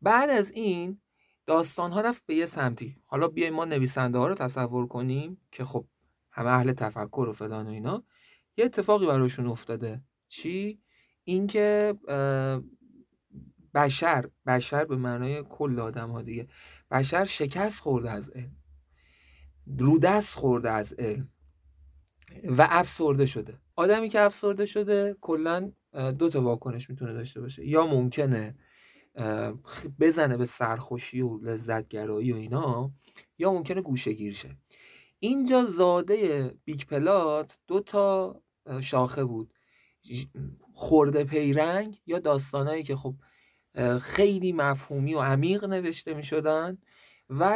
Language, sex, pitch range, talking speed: Persian, male, 125-170 Hz, 125 wpm